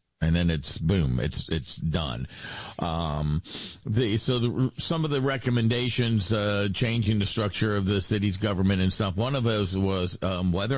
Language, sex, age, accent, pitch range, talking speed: English, male, 50-69, American, 90-110 Hz, 175 wpm